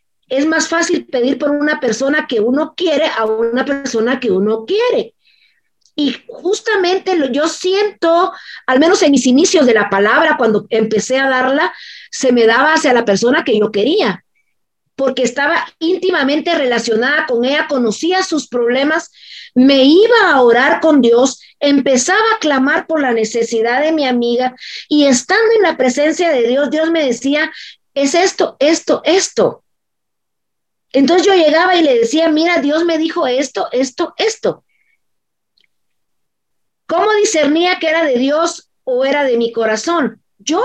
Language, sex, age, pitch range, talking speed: Spanish, female, 40-59, 255-345 Hz, 155 wpm